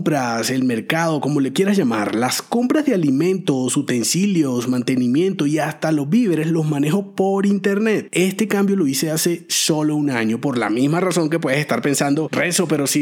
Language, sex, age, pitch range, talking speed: Spanish, male, 30-49, 145-205 Hz, 185 wpm